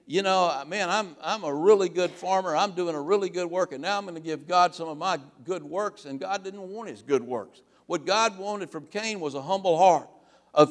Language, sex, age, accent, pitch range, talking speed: English, male, 60-79, American, 155-205 Hz, 245 wpm